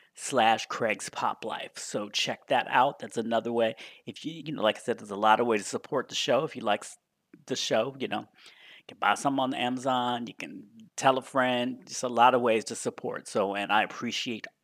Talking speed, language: 230 wpm, English